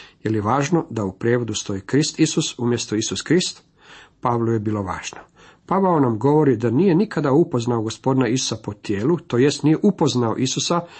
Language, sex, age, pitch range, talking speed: Croatian, male, 50-69, 115-155 Hz, 175 wpm